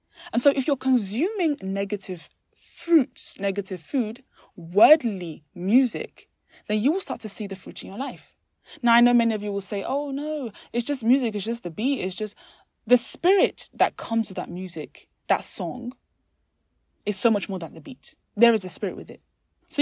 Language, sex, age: English, female, 20-39